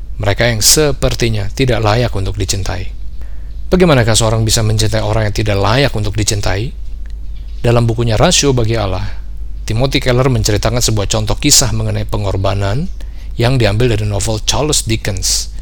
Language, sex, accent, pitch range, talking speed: Indonesian, male, native, 95-115 Hz, 140 wpm